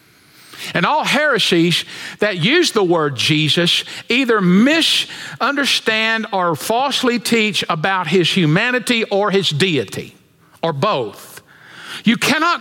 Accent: American